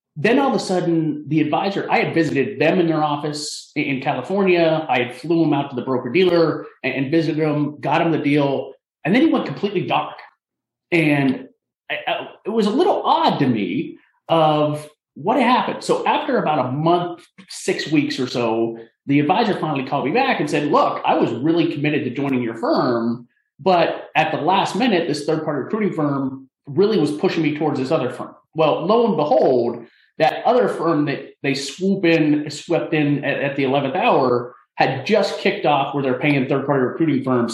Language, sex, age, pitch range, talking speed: English, male, 30-49, 140-190 Hz, 195 wpm